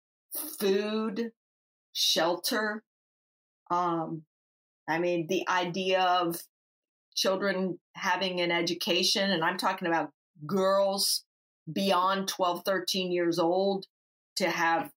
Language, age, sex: English, 40-59, female